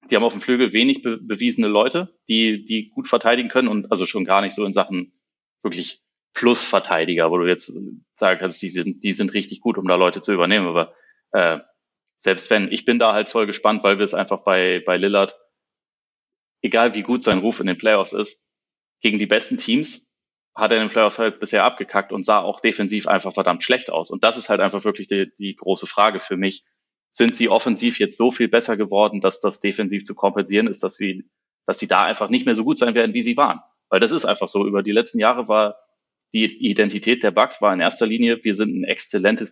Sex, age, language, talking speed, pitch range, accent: male, 30-49, German, 225 wpm, 100-125 Hz, German